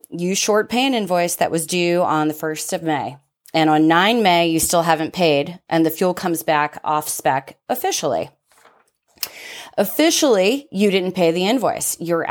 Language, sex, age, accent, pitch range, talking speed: English, female, 30-49, American, 155-190 Hz, 175 wpm